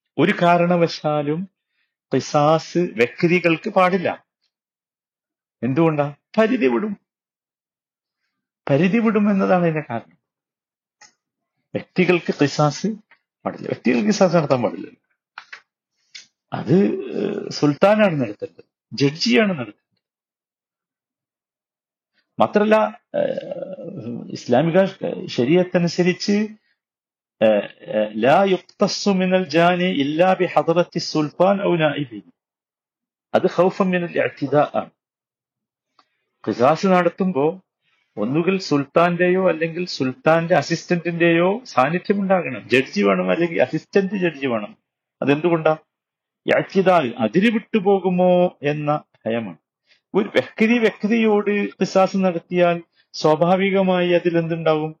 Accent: native